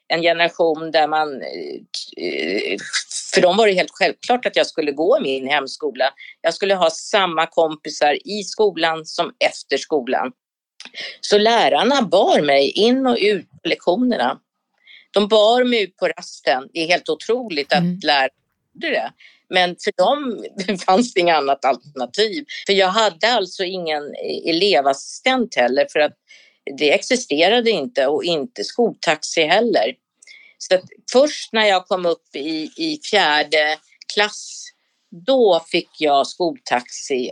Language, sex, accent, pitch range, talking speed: Swedish, female, native, 155-220 Hz, 140 wpm